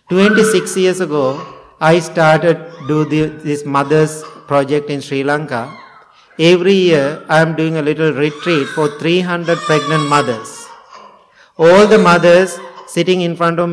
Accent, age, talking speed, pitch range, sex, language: Indian, 50-69, 140 wpm, 145-175 Hz, male, English